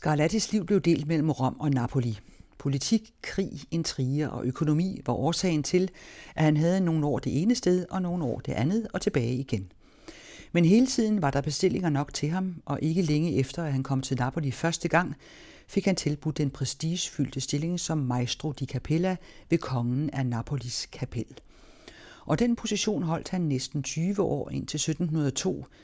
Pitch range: 130-175 Hz